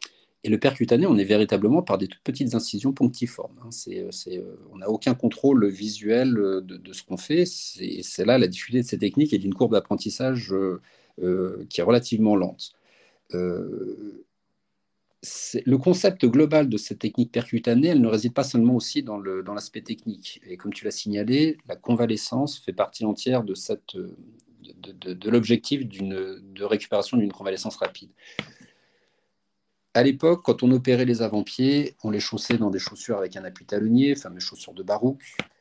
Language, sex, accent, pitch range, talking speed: French, male, French, 100-130 Hz, 180 wpm